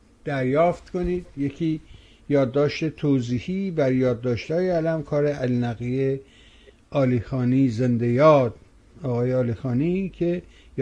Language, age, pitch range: Persian, 60-79, 125-160 Hz